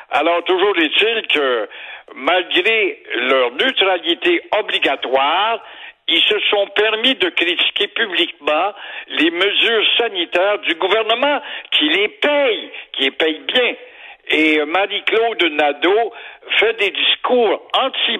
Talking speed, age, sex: 110 wpm, 60-79, male